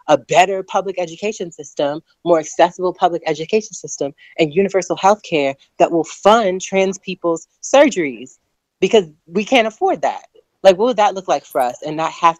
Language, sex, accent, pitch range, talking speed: English, female, American, 140-180 Hz, 170 wpm